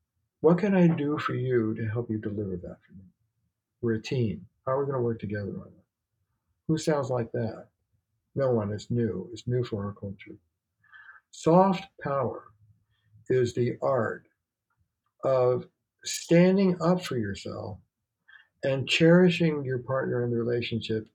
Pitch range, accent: 110-155 Hz, American